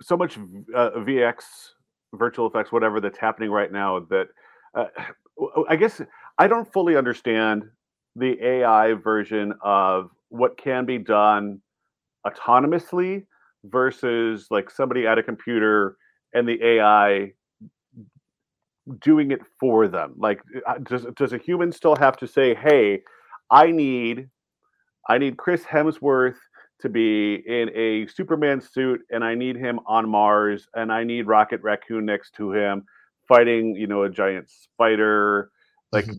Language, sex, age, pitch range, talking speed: English, male, 40-59, 105-140 Hz, 140 wpm